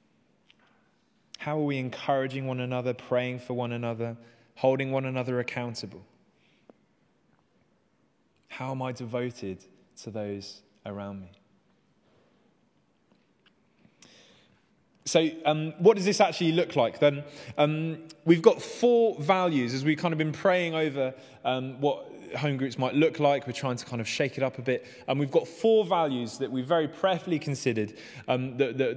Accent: British